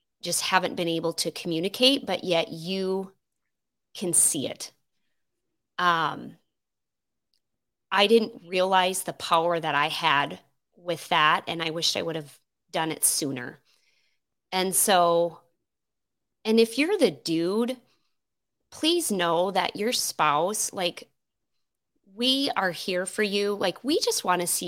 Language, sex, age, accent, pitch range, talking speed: English, female, 20-39, American, 165-205 Hz, 135 wpm